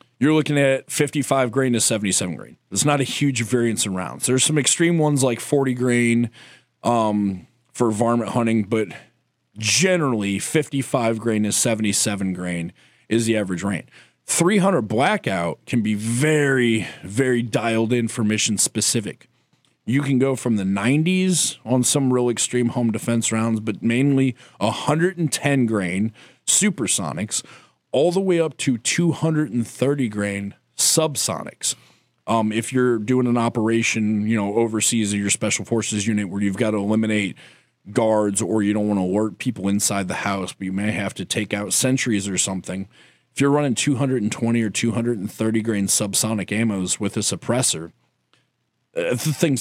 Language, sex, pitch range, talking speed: English, male, 105-130 Hz, 150 wpm